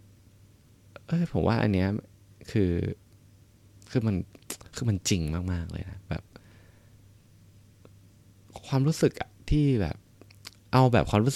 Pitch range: 90-110 Hz